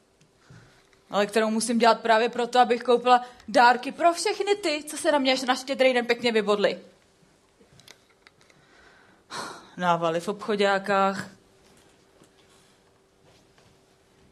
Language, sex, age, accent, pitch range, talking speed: Czech, female, 30-49, native, 210-260 Hz, 100 wpm